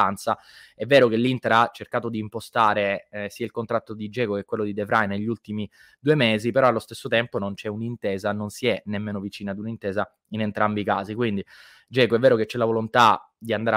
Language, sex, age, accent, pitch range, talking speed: Italian, male, 20-39, native, 105-120 Hz, 220 wpm